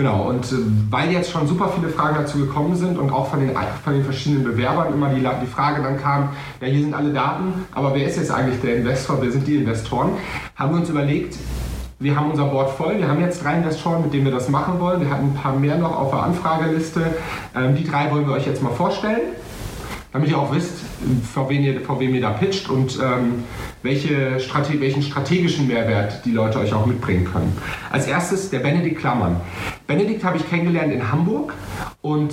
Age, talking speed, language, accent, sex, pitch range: 40-59, 210 wpm, German, German, male, 130-160 Hz